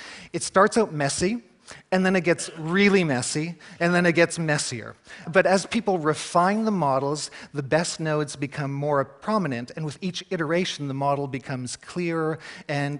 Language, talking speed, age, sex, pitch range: Russian, 165 wpm, 40-59, male, 135-180 Hz